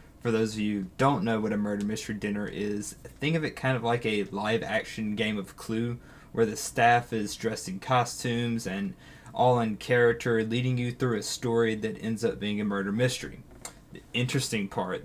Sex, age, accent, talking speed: male, 20-39, American, 205 wpm